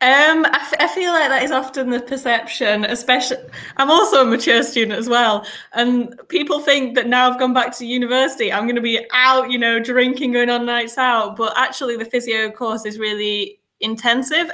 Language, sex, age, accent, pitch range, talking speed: English, female, 10-29, British, 210-250 Hz, 200 wpm